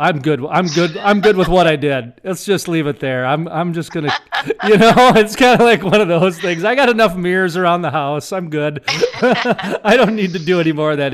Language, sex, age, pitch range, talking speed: English, male, 40-59, 135-180 Hz, 260 wpm